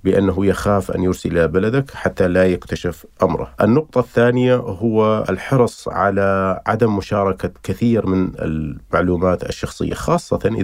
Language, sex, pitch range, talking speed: Arabic, male, 90-110 Hz, 120 wpm